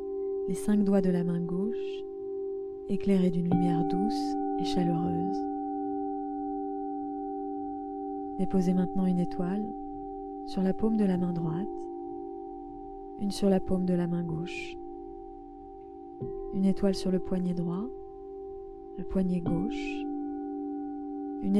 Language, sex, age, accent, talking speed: French, female, 20-39, French, 115 wpm